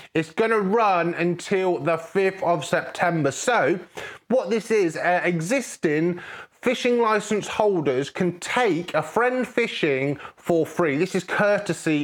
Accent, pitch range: British, 145-210 Hz